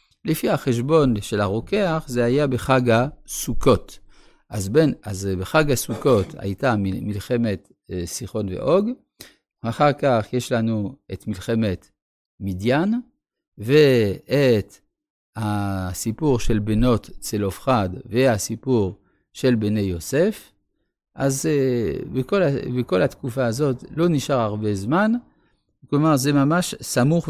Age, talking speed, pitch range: 50-69, 100 wpm, 105-145 Hz